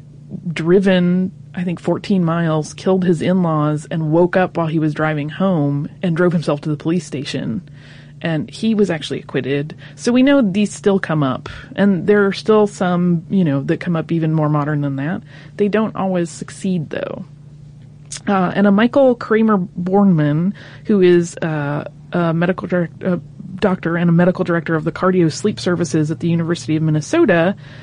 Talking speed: 180 wpm